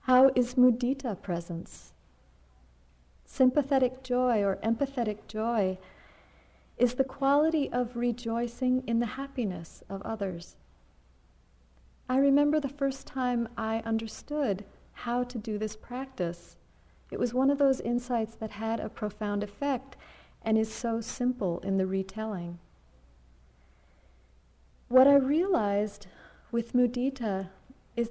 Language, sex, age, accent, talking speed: English, female, 50-69, American, 115 wpm